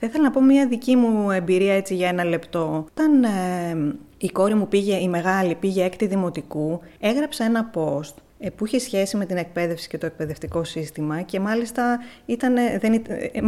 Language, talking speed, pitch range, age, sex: Greek, 185 wpm, 185-245 Hz, 20-39, female